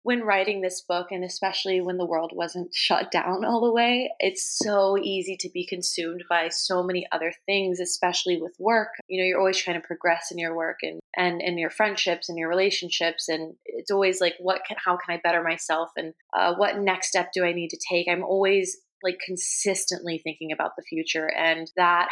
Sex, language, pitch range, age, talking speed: female, English, 170-205 Hz, 20-39, 210 wpm